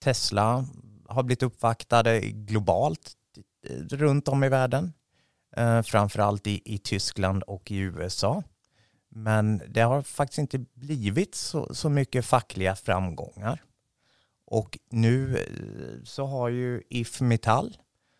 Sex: male